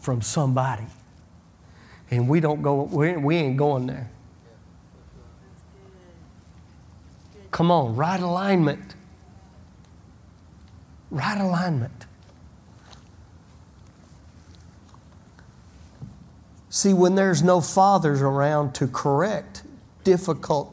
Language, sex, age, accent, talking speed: English, male, 40-59, American, 75 wpm